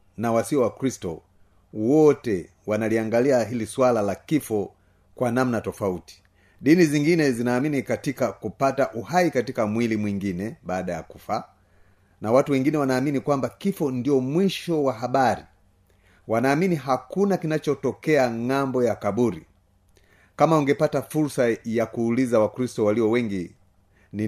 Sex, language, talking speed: male, Swahili, 125 wpm